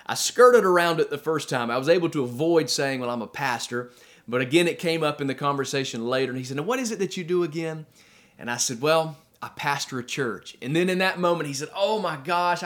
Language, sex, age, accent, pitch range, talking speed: English, male, 30-49, American, 140-190 Hz, 260 wpm